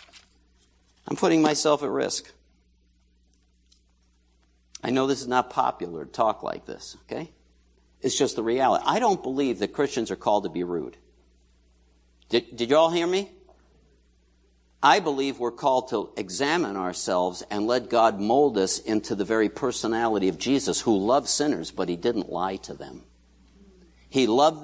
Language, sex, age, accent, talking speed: English, male, 60-79, American, 160 wpm